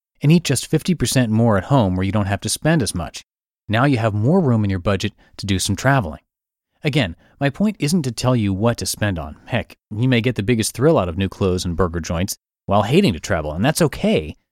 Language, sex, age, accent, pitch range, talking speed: English, male, 30-49, American, 95-140 Hz, 245 wpm